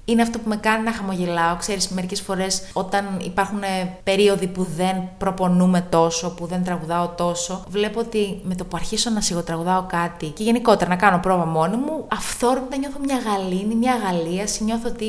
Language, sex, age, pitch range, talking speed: Greek, female, 20-39, 180-235 Hz, 180 wpm